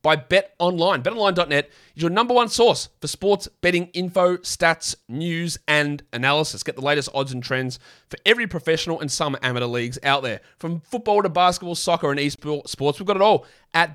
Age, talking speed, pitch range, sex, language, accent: 30-49, 190 wpm, 140-180 Hz, male, English, Australian